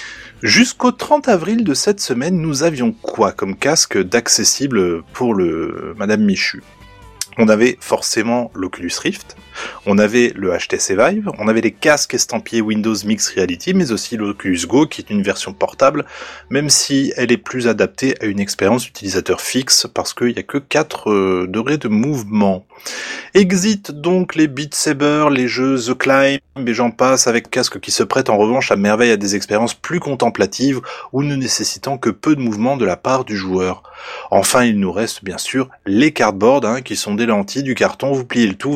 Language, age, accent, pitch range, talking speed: French, 20-39, French, 105-145 Hz, 185 wpm